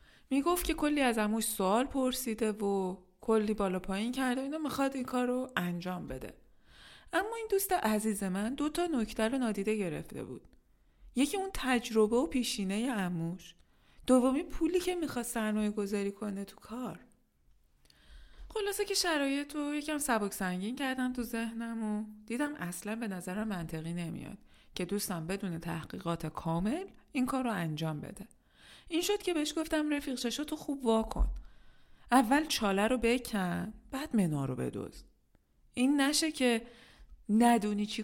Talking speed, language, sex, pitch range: 150 wpm, Persian, female, 180-255 Hz